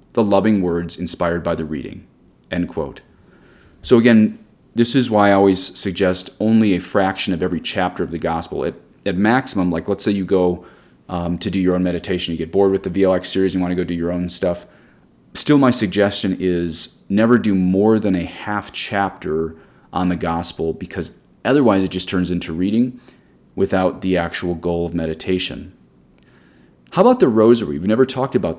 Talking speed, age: 190 wpm, 30-49